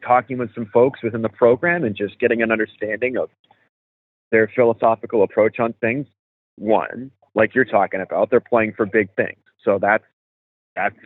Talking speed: 170 wpm